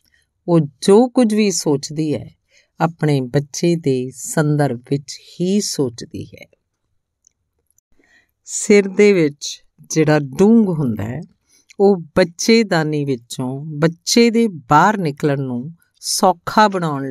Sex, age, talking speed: female, 50-69, 105 wpm